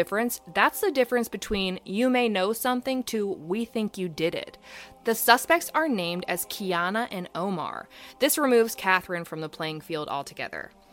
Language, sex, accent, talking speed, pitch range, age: English, female, American, 175 wpm, 170-245 Hz, 20-39